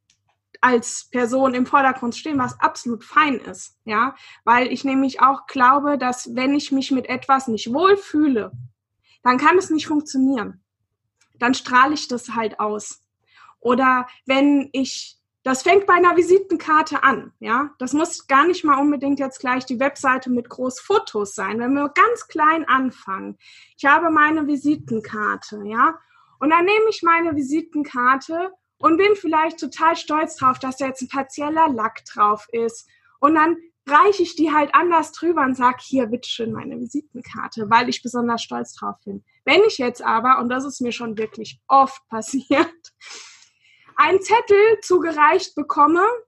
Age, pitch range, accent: 20-39, 245-320 Hz, German